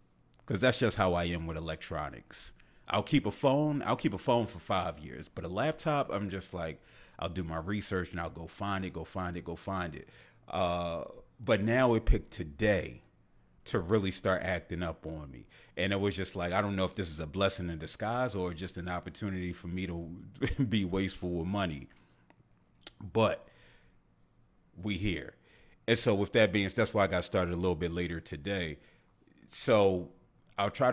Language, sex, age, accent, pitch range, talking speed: English, male, 30-49, American, 85-100 Hz, 195 wpm